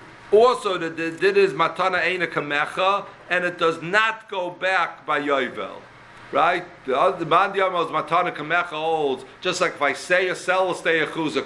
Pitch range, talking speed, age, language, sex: 155-200 Hz, 140 wpm, 60-79, English, male